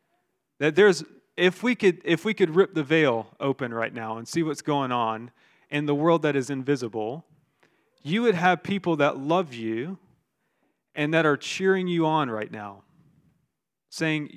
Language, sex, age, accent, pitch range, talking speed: English, male, 30-49, American, 140-180 Hz, 170 wpm